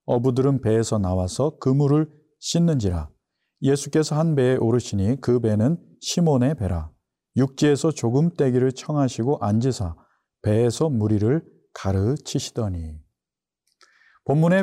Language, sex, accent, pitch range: Korean, male, native, 110-150 Hz